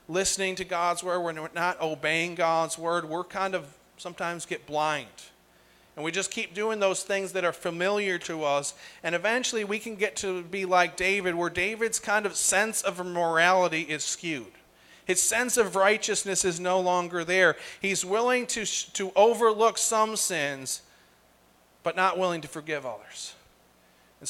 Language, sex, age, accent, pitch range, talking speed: English, male, 40-59, American, 160-195 Hz, 165 wpm